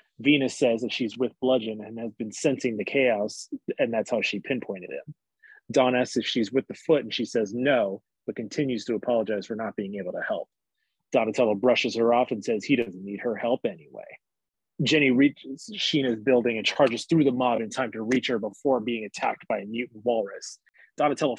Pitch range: 120-145 Hz